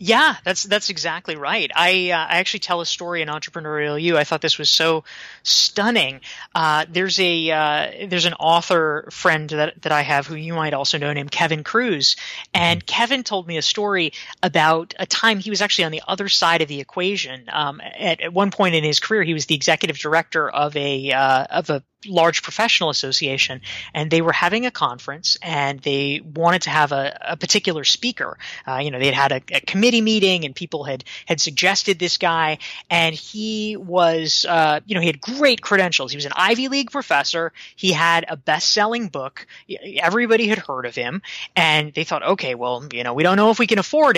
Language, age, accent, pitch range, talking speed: English, 20-39, American, 150-190 Hz, 205 wpm